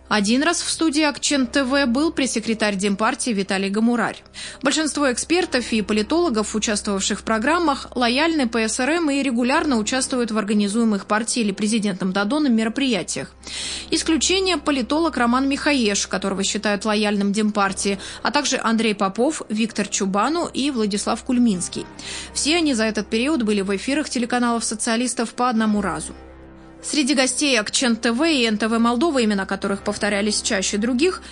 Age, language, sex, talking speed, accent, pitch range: 20-39, Russian, female, 140 wpm, native, 210-285 Hz